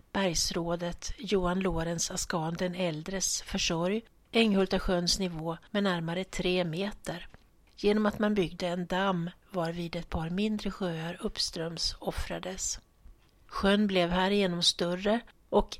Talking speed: 120 wpm